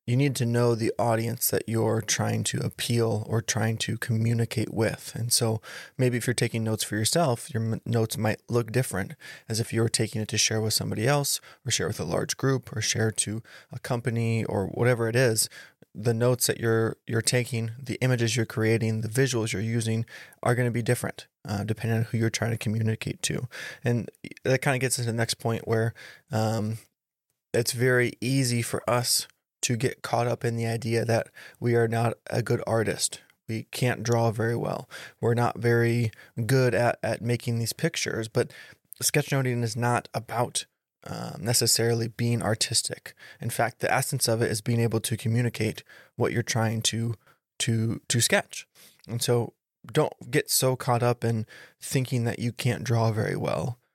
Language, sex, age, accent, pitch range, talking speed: English, male, 20-39, American, 110-120 Hz, 190 wpm